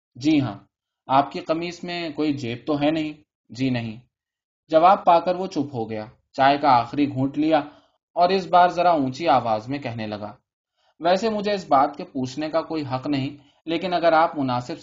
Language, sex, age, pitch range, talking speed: Urdu, male, 20-39, 130-160 Hz, 195 wpm